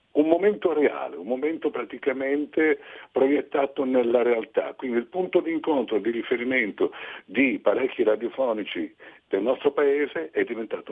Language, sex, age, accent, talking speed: Italian, male, 60-79, native, 130 wpm